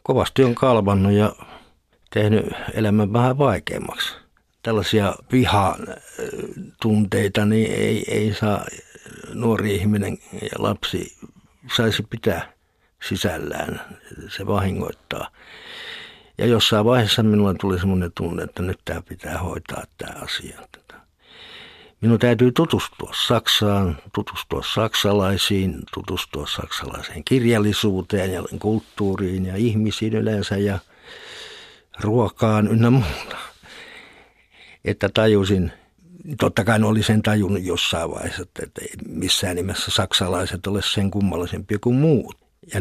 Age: 60-79